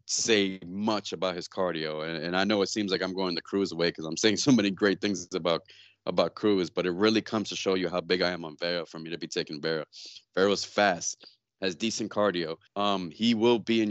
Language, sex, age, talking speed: English, male, 20-39, 240 wpm